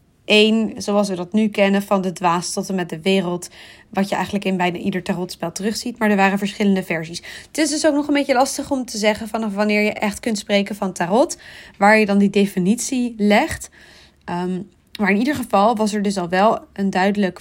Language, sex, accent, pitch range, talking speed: Dutch, female, Dutch, 185-215 Hz, 220 wpm